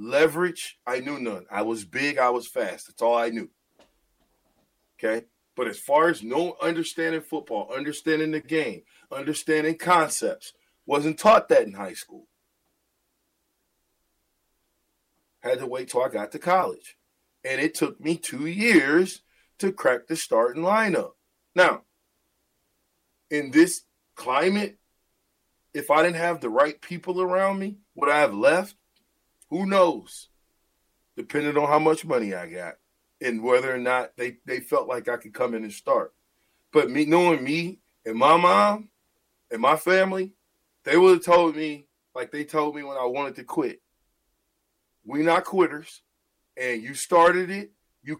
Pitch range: 130-180 Hz